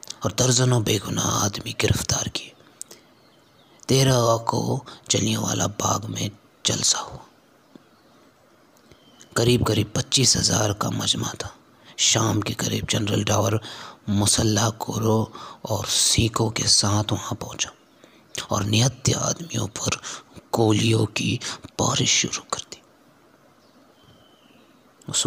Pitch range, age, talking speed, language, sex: 105-120 Hz, 30-49, 100 wpm, English, male